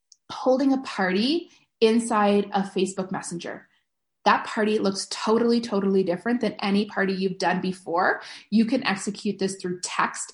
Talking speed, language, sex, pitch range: 145 wpm, English, female, 190-230 Hz